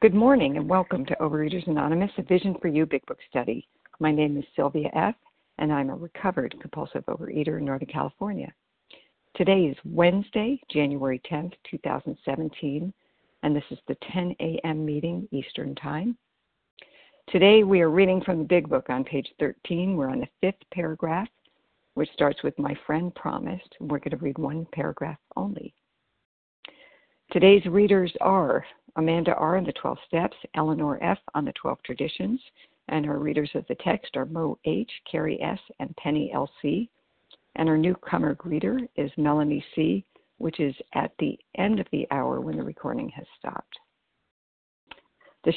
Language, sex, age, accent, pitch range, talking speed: English, female, 60-79, American, 145-185 Hz, 160 wpm